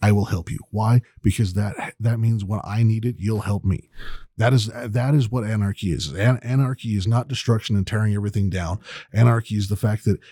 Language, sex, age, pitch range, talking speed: English, male, 30-49, 105-125 Hz, 215 wpm